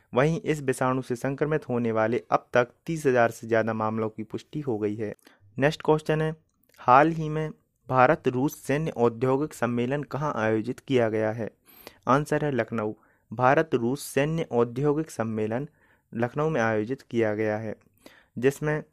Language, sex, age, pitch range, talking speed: Hindi, male, 30-49, 115-150 Hz, 155 wpm